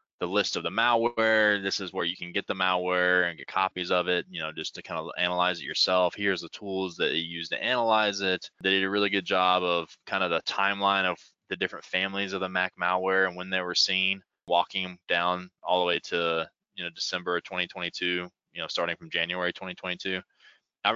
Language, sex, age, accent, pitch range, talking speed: English, male, 20-39, American, 90-105 Hz, 220 wpm